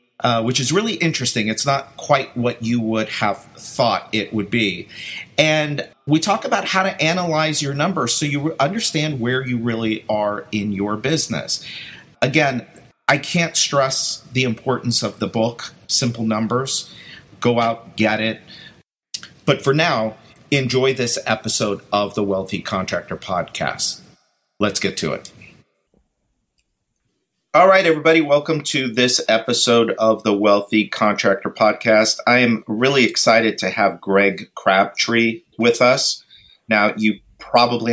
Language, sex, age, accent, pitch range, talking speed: English, male, 50-69, American, 110-140 Hz, 140 wpm